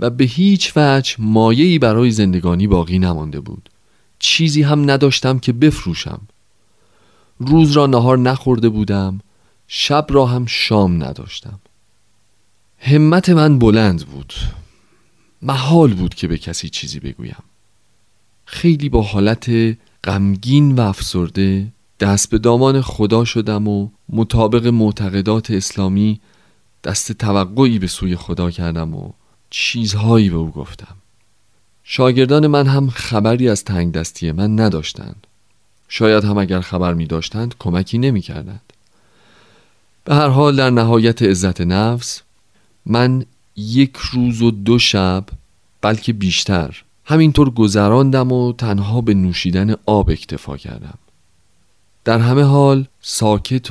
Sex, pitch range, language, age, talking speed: male, 95-125 Hz, Persian, 40-59, 120 wpm